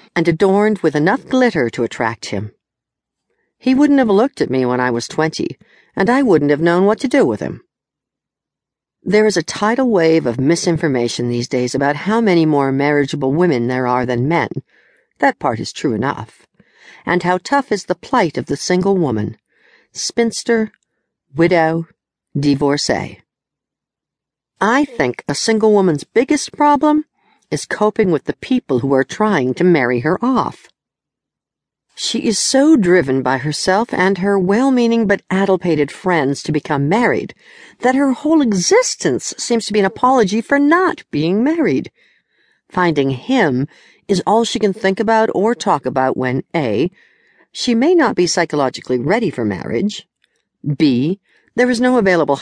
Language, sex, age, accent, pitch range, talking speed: English, female, 60-79, American, 145-230 Hz, 160 wpm